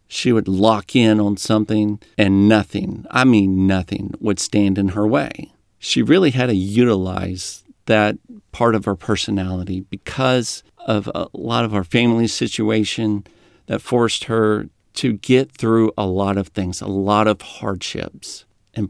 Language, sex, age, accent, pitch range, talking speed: English, male, 50-69, American, 100-135 Hz, 155 wpm